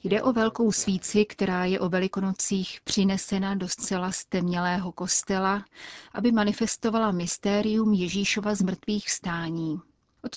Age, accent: 30-49, native